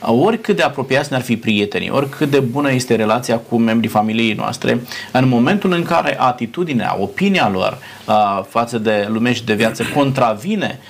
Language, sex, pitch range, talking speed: Romanian, male, 115-145 Hz, 160 wpm